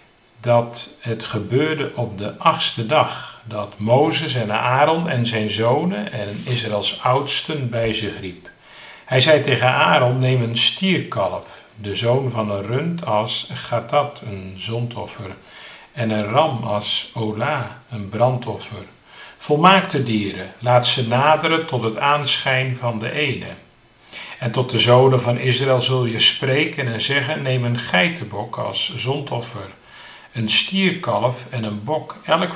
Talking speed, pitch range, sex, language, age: 140 wpm, 110-140 Hz, male, Dutch, 50-69